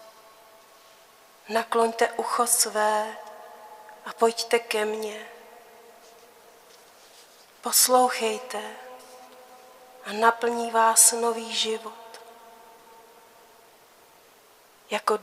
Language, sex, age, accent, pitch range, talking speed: Czech, female, 40-59, native, 215-230 Hz, 55 wpm